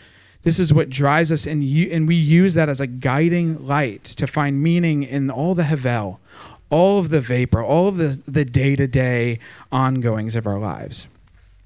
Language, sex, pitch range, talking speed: English, male, 115-155 Hz, 180 wpm